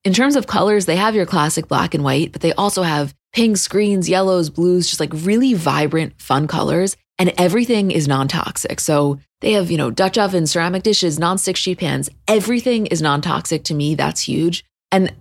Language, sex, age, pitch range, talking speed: English, female, 20-39, 150-185 Hz, 195 wpm